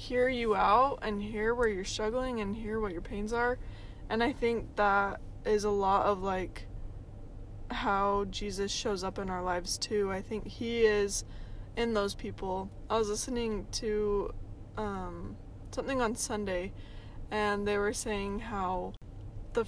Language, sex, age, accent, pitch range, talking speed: English, female, 20-39, American, 165-225 Hz, 160 wpm